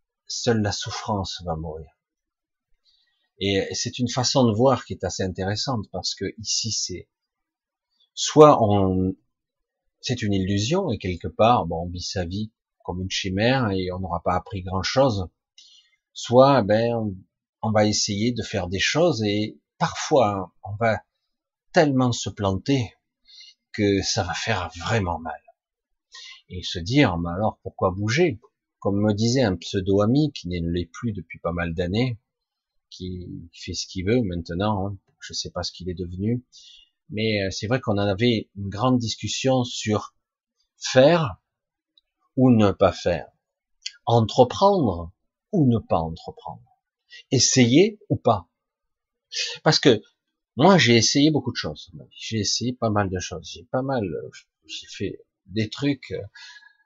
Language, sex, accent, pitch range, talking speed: French, male, French, 95-130 Hz, 155 wpm